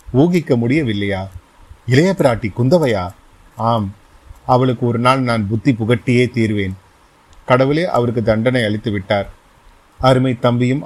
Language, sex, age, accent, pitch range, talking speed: Tamil, male, 30-49, native, 110-130 Hz, 110 wpm